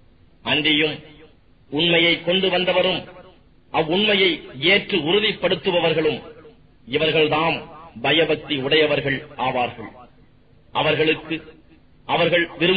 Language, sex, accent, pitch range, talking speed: English, male, Indian, 145-175 Hz, 80 wpm